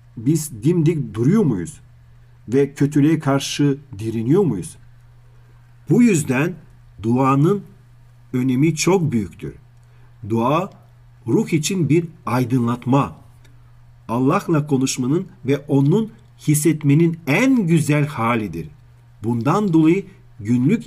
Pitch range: 120-155 Hz